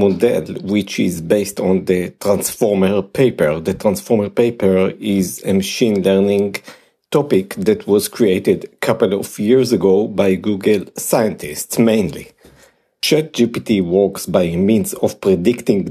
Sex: male